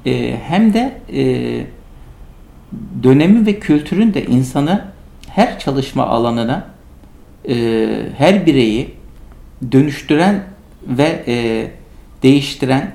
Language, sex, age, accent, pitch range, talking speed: Turkish, male, 60-79, native, 120-165 Hz, 70 wpm